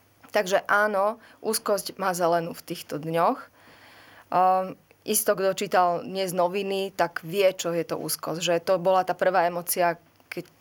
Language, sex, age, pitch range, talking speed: Slovak, female, 20-39, 170-205 Hz, 155 wpm